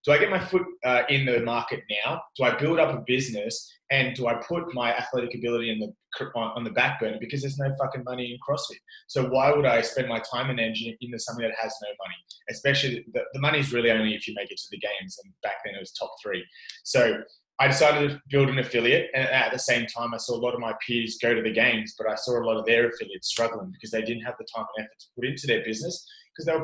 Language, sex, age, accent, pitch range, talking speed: English, male, 20-39, Australian, 115-140 Hz, 265 wpm